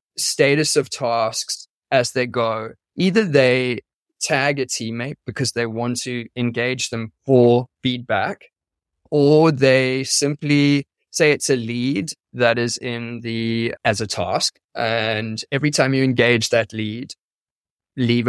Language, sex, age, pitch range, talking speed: English, male, 20-39, 115-135 Hz, 135 wpm